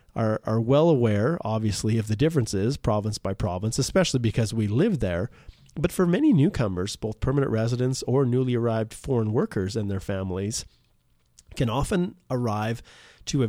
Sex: male